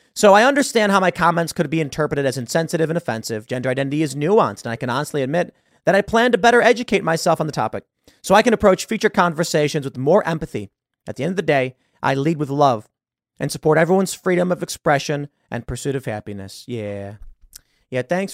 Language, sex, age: English, male, 30-49